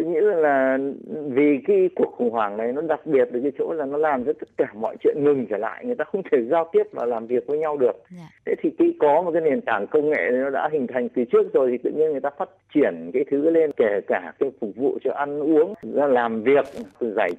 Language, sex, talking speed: Vietnamese, male, 260 wpm